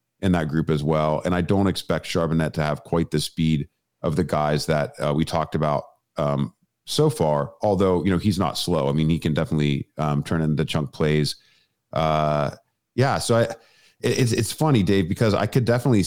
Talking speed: 210 wpm